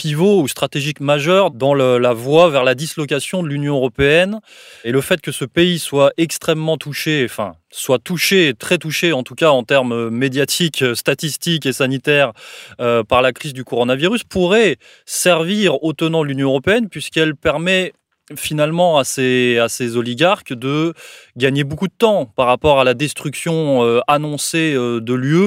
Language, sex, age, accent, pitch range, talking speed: French, male, 20-39, French, 130-160 Hz, 165 wpm